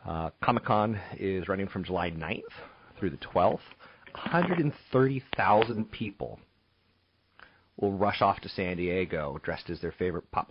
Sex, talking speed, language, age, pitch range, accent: male, 130 wpm, English, 40-59, 90-120 Hz, American